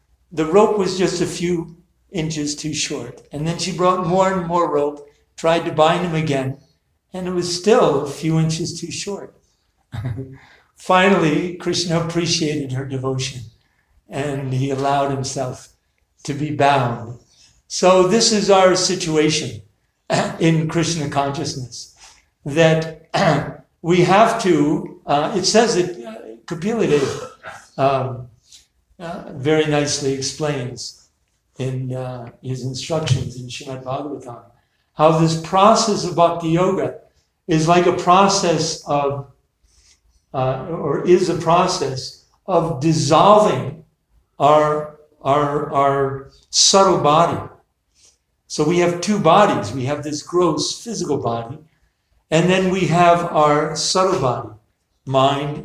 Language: English